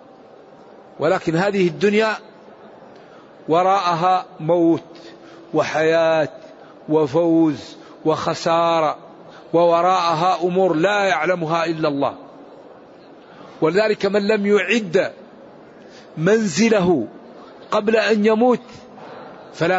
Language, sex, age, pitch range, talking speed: Arabic, male, 50-69, 170-210 Hz, 70 wpm